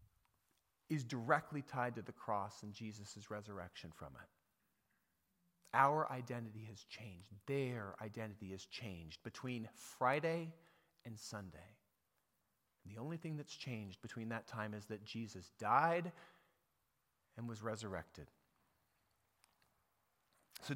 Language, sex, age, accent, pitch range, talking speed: English, male, 30-49, American, 105-145 Hz, 115 wpm